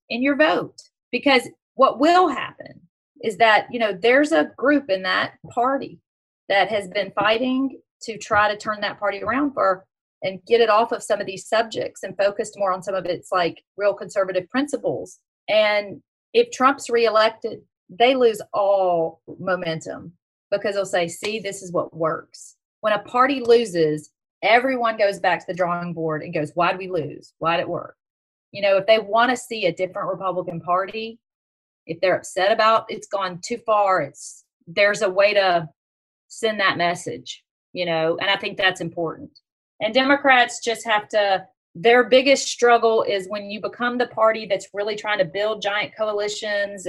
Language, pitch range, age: English, 185-225 Hz, 40-59